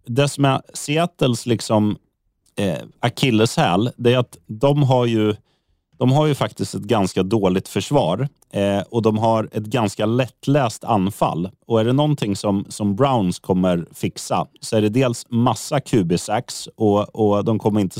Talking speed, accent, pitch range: 145 wpm, native, 100-125 Hz